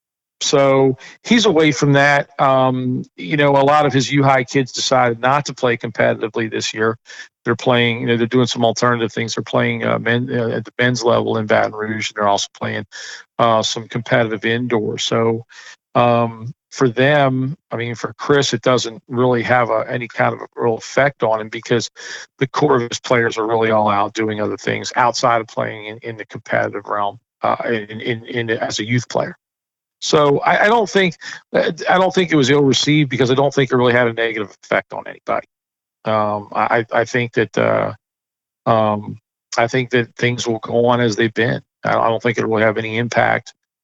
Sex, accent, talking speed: male, American, 205 wpm